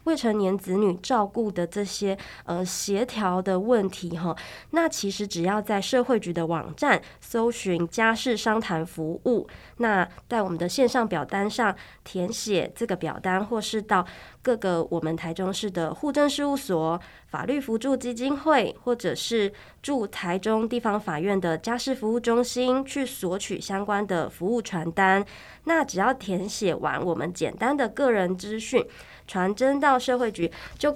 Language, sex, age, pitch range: Chinese, female, 20-39, 185-245 Hz